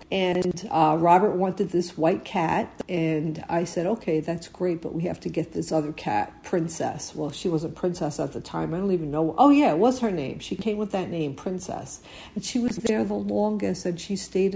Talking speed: 225 wpm